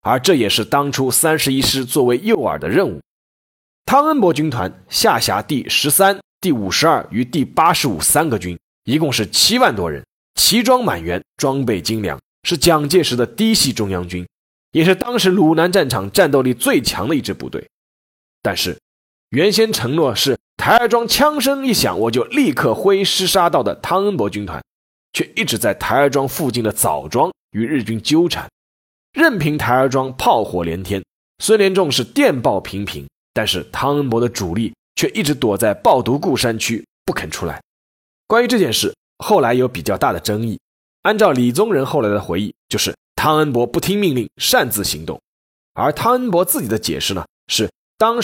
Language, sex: Chinese, male